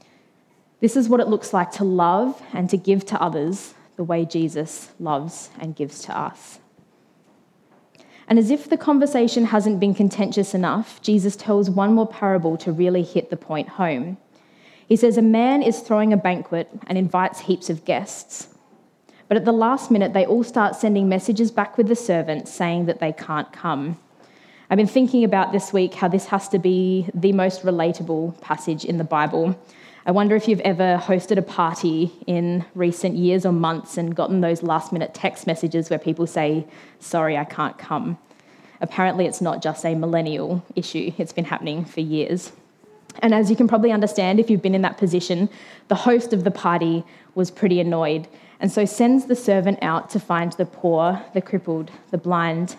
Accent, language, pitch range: Australian, English, 170-210 Hz